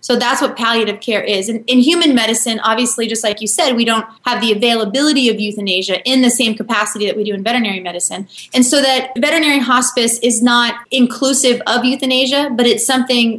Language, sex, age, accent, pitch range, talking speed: English, female, 20-39, American, 210-255 Hz, 200 wpm